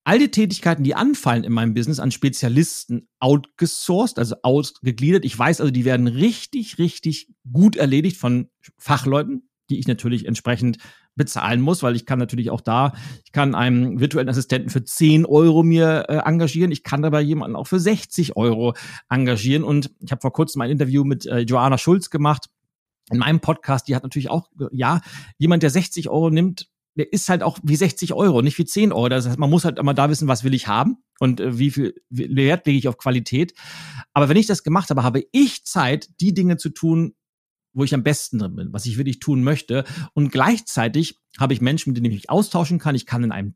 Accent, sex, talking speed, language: German, male, 210 wpm, German